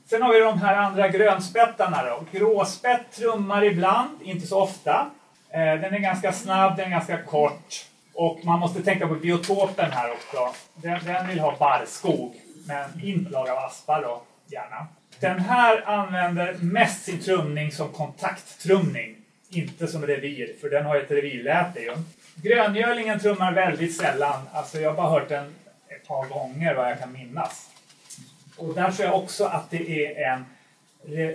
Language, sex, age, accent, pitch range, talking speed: Swedish, male, 30-49, native, 150-195 Hz, 155 wpm